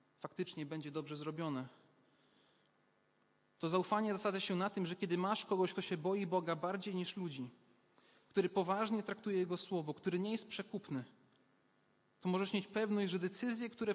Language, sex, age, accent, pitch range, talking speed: Polish, male, 30-49, native, 160-200 Hz, 160 wpm